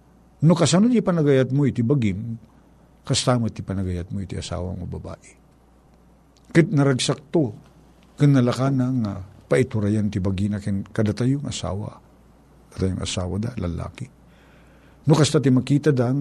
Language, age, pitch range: Filipino, 50-69, 95-130 Hz